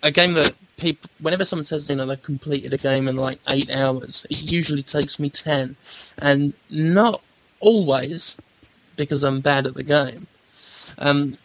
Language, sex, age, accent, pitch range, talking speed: English, male, 10-29, British, 140-160 Hz, 170 wpm